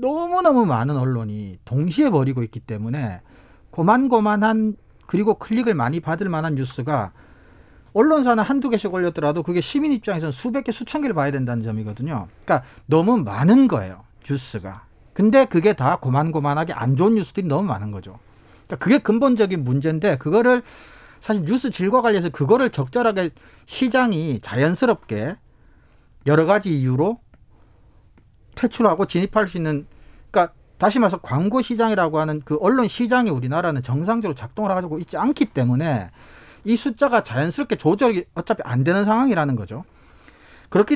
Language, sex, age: Korean, male, 40-59